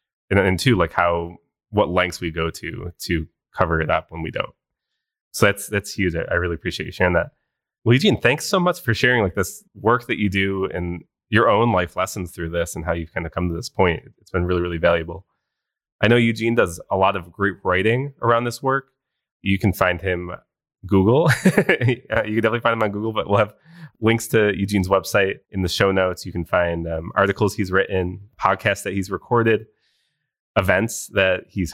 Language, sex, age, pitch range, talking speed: English, male, 20-39, 85-110 Hz, 210 wpm